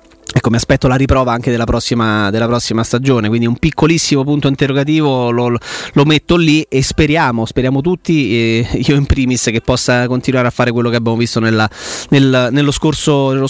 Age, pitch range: 30-49, 130-155 Hz